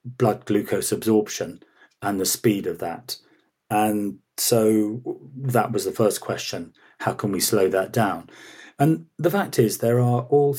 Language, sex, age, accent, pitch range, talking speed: English, male, 40-59, British, 105-130 Hz, 160 wpm